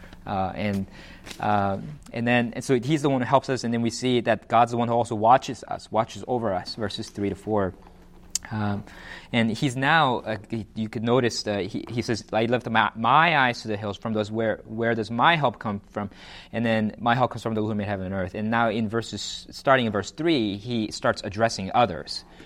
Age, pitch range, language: 20-39, 100-120 Hz, English